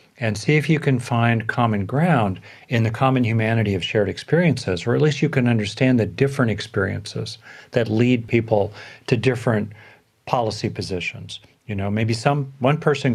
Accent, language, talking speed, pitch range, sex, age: American, English, 170 wpm, 105-135 Hz, male, 50-69